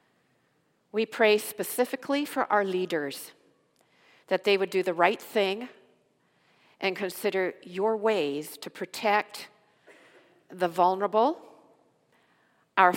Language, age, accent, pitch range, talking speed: English, 50-69, American, 180-245 Hz, 100 wpm